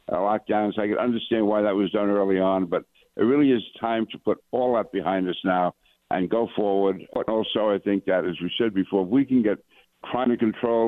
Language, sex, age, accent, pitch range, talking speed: English, male, 60-79, American, 100-125 Hz, 235 wpm